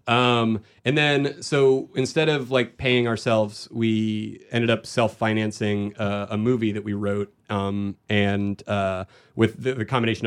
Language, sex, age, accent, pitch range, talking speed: English, male, 30-49, American, 105-125 Hz, 150 wpm